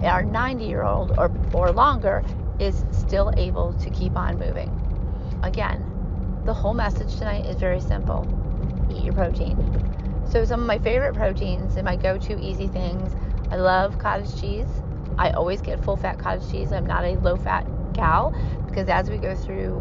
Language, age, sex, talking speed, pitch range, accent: English, 30-49, female, 175 wpm, 85-95 Hz, American